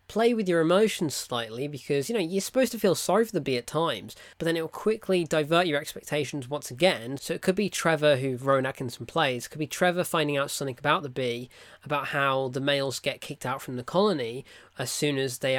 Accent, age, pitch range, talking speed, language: British, 20-39, 140-210 Hz, 235 wpm, English